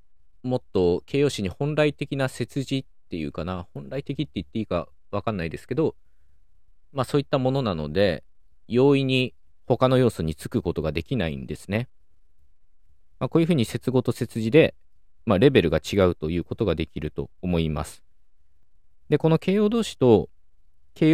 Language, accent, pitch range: Japanese, native, 75-115 Hz